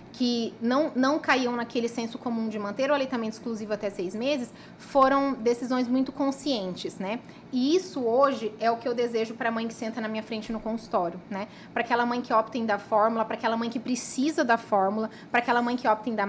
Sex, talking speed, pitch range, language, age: female, 225 wpm, 220-270 Hz, Portuguese, 20-39